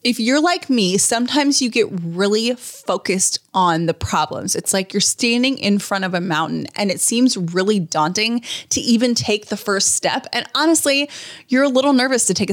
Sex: female